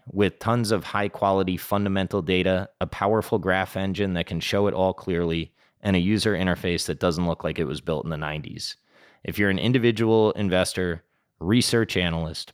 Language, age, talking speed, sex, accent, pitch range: English, 30-49, 180 wpm, male, American, 85-110 Hz